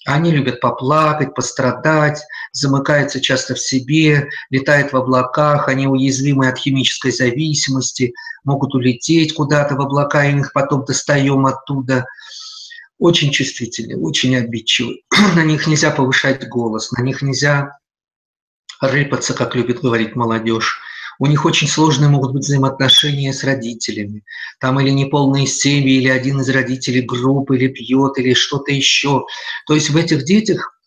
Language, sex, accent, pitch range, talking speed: Russian, male, native, 130-150 Hz, 140 wpm